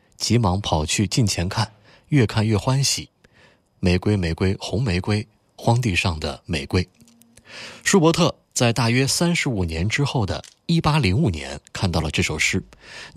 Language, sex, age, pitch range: Chinese, male, 20-39, 90-120 Hz